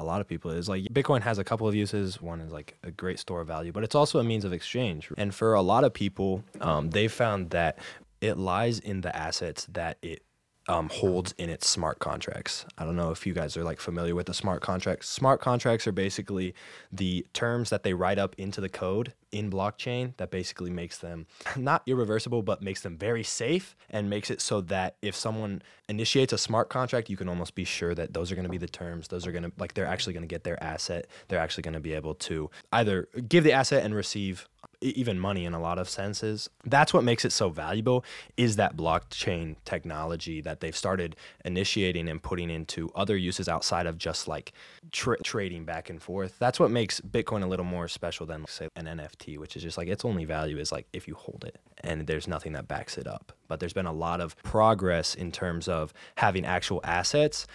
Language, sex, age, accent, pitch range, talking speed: English, male, 20-39, American, 85-110 Hz, 225 wpm